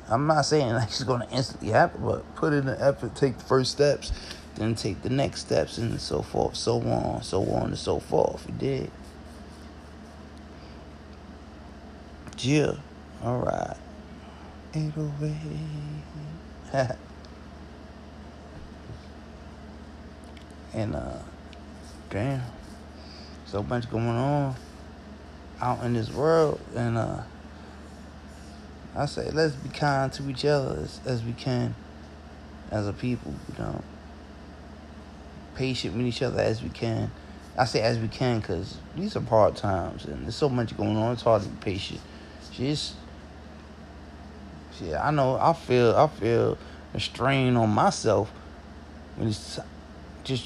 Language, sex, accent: English, male, American